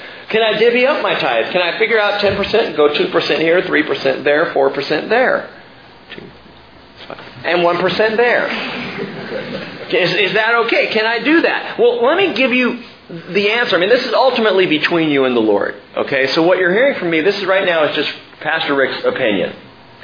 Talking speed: 190 wpm